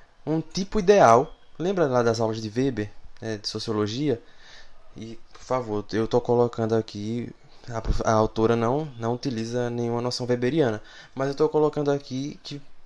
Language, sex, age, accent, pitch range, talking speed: Portuguese, male, 20-39, Brazilian, 115-155 Hz, 160 wpm